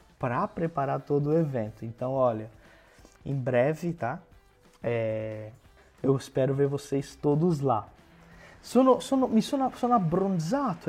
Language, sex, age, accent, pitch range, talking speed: Portuguese, male, 20-39, Brazilian, 120-160 Hz, 105 wpm